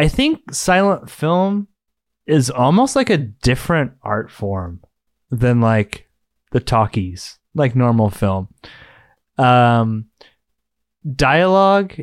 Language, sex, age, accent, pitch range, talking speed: English, male, 20-39, American, 115-150 Hz, 100 wpm